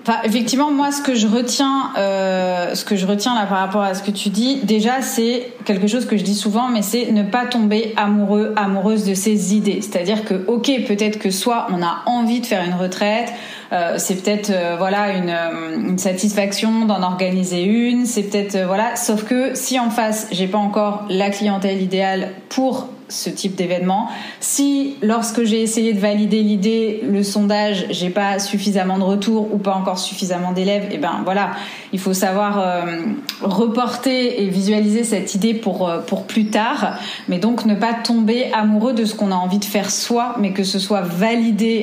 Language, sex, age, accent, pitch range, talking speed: French, female, 30-49, French, 195-230 Hz, 195 wpm